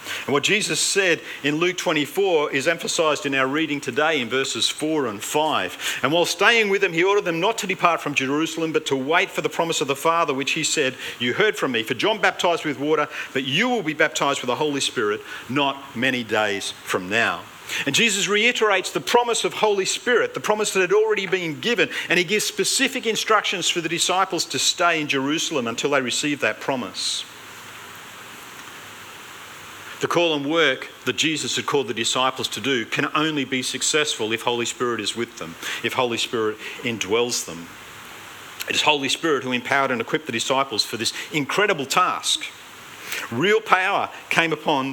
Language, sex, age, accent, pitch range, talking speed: English, male, 50-69, Australian, 130-180 Hz, 190 wpm